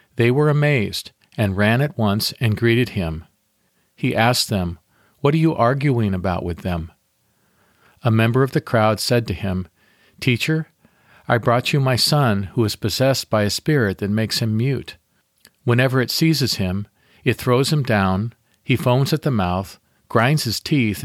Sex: male